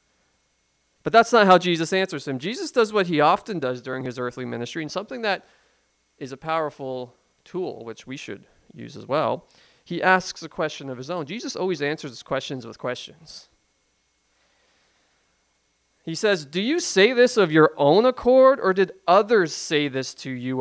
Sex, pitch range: male, 130-220 Hz